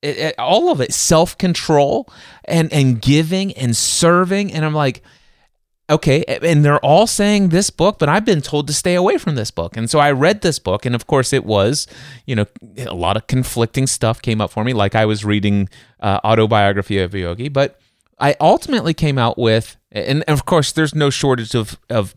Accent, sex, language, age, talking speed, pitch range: American, male, English, 30-49, 205 wpm, 115-155 Hz